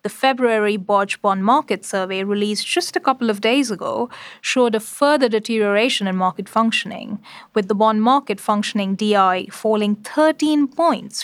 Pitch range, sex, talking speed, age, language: 205-260 Hz, female, 155 wpm, 30-49, English